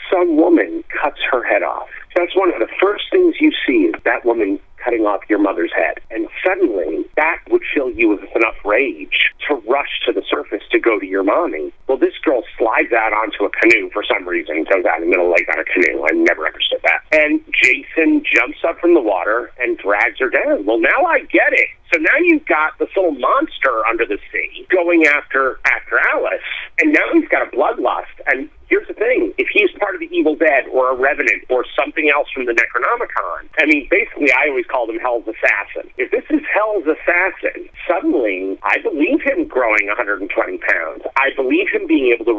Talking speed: 200 wpm